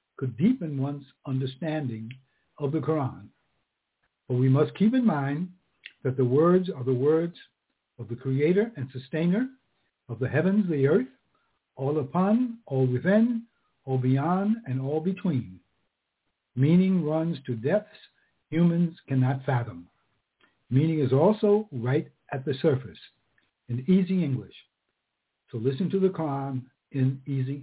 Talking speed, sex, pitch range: 135 wpm, male, 130-180 Hz